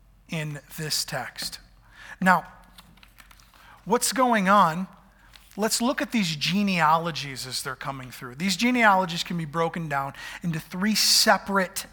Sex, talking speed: male, 125 wpm